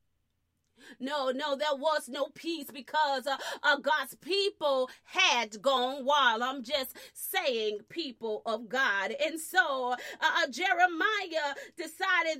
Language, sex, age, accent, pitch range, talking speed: English, female, 30-49, American, 265-360 Hz, 125 wpm